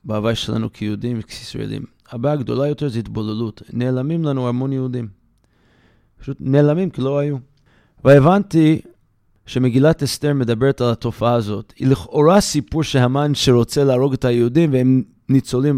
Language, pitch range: English, 115-140 Hz